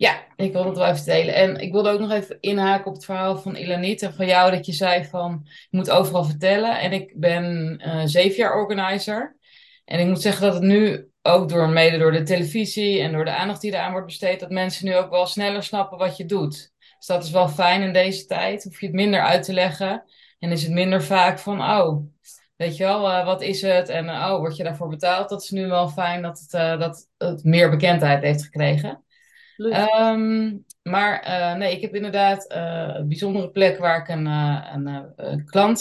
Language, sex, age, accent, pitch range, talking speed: Dutch, female, 20-39, Dutch, 165-195 Hz, 230 wpm